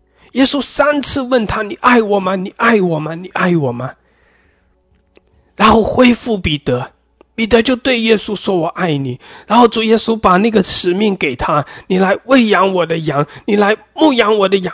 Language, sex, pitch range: English, male, 165-240 Hz